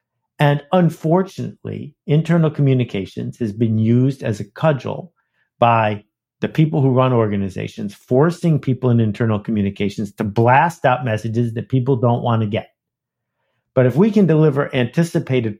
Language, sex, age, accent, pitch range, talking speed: English, male, 50-69, American, 125-195 Hz, 140 wpm